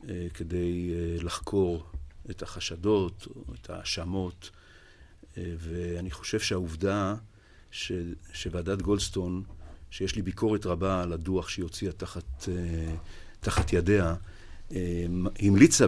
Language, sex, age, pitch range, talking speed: Hebrew, male, 50-69, 90-105 Hz, 90 wpm